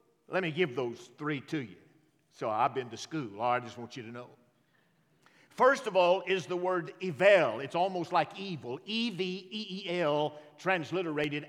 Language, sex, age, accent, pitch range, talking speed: English, male, 50-69, American, 150-215 Hz, 165 wpm